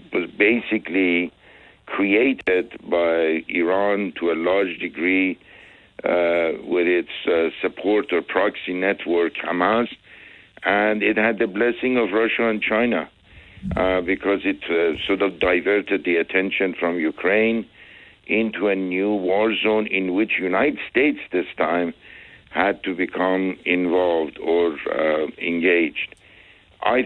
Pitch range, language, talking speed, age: 90-110 Hz, English, 125 wpm, 60-79